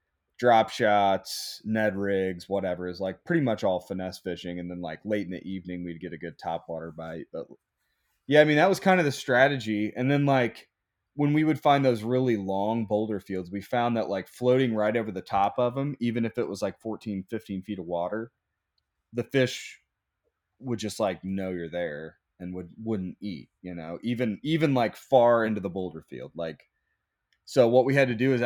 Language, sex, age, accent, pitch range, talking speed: English, male, 20-39, American, 95-120 Hz, 205 wpm